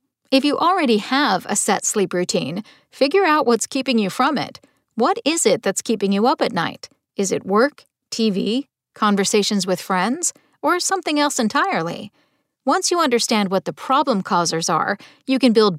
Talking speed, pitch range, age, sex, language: 175 wpm, 195-265 Hz, 40-59, female, English